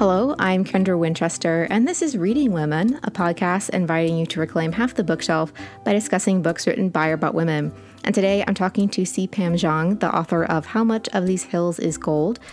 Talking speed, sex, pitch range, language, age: 210 wpm, female, 165-205 Hz, English, 30-49